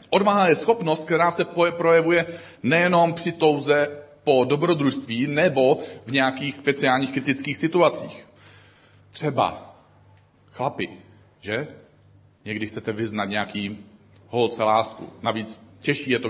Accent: native